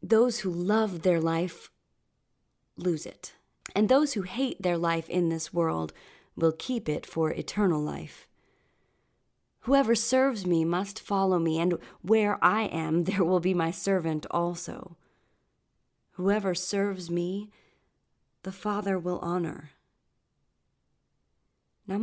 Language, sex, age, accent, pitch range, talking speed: English, female, 30-49, American, 160-205 Hz, 125 wpm